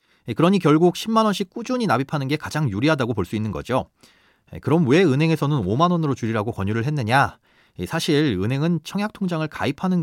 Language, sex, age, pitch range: Korean, male, 30-49, 115-175 Hz